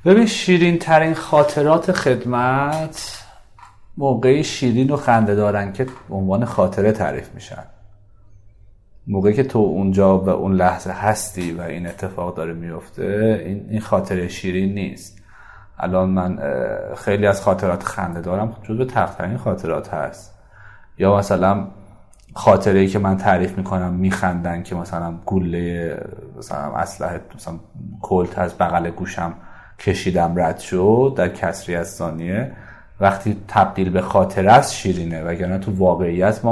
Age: 30-49